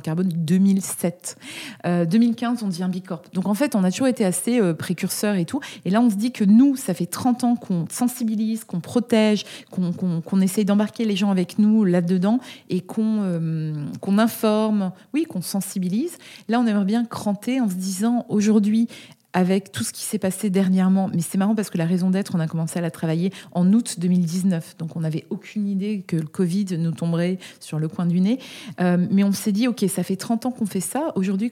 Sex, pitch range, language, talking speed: female, 175-210 Hz, French, 215 wpm